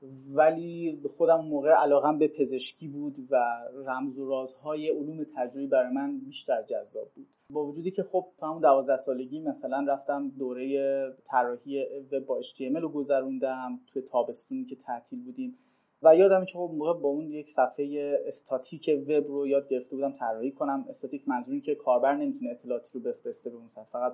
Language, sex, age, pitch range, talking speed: Persian, male, 30-49, 135-195 Hz, 175 wpm